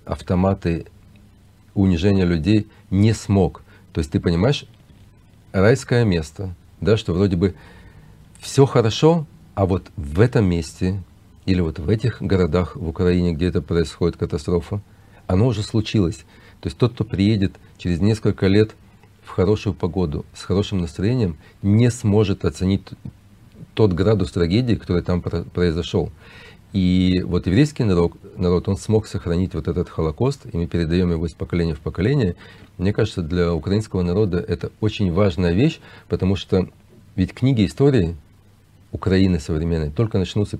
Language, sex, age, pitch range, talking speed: English, male, 40-59, 90-105 Hz, 140 wpm